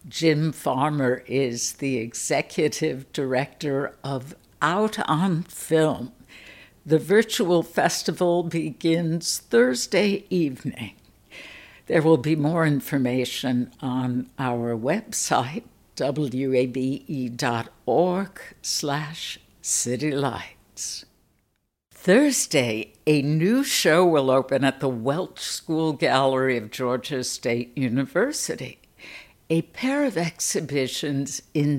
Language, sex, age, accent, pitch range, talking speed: English, female, 60-79, American, 130-170 Hz, 90 wpm